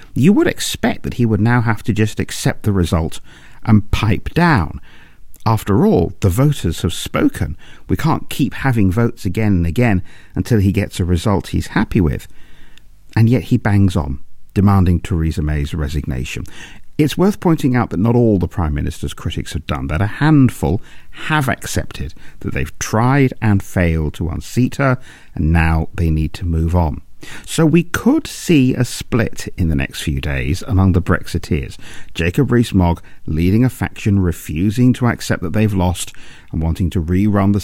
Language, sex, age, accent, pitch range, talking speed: English, male, 50-69, British, 85-115 Hz, 175 wpm